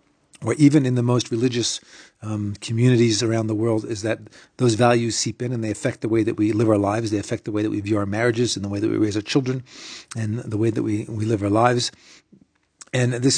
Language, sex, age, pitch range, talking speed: English, male, 40-59, 115-145 Hz, 245 wpm